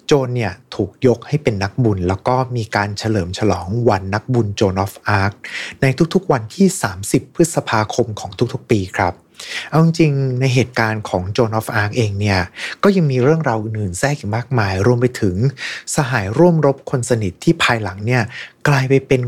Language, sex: Thai, male